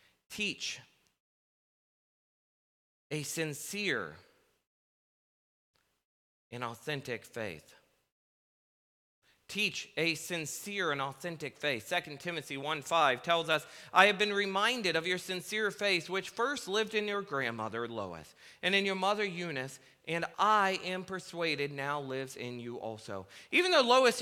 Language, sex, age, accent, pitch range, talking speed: English, male, 40-59, American, 145-200 Hz, 120 wpm